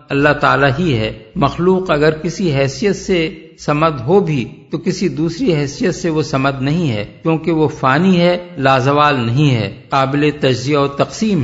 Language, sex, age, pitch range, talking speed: Urdu, male, 50-69, 140-175 Hz, 170 wpm